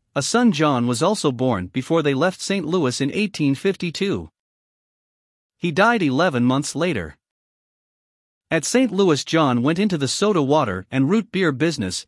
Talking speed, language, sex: 155 wpm, English, male